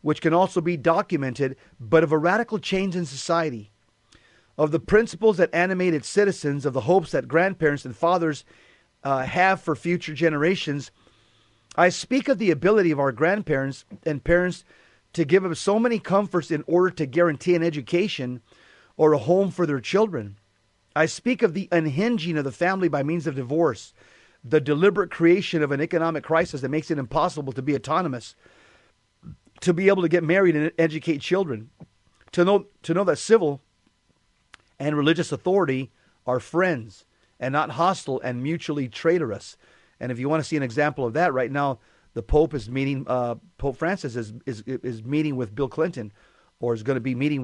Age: 40-59